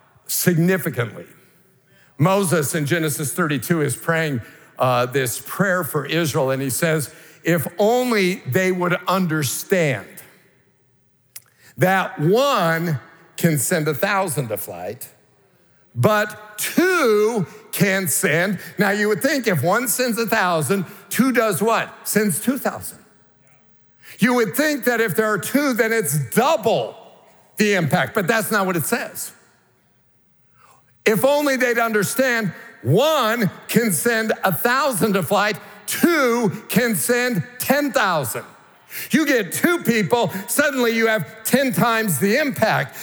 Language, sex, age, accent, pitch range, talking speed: English, male, 50-69, American, 180-255 Hz, 125 wpm